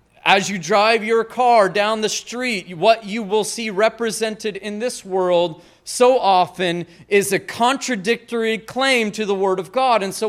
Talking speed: 170 wpm